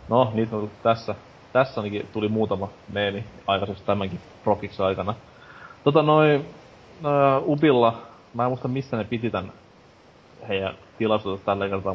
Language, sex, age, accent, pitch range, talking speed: Finnish, male, 30-49, native, 95-115 Hz, 135 wpm